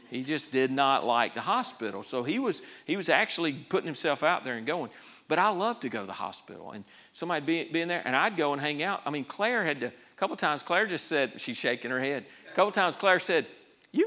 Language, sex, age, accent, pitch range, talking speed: English, male, 40-59, American, 125-170 Hz, 270 wpm